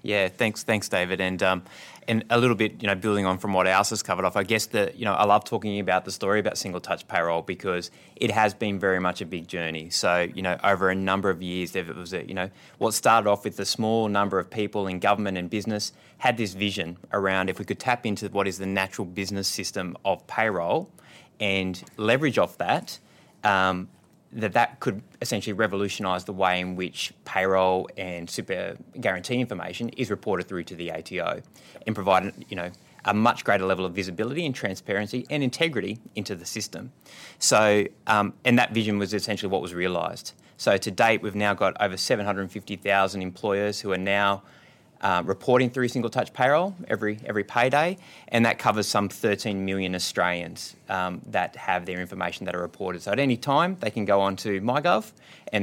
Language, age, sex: English, 20-39, male